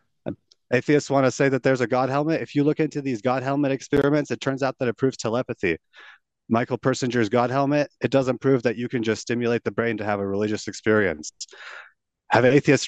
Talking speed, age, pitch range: 210 wpm, 30-49, 115-140 Hz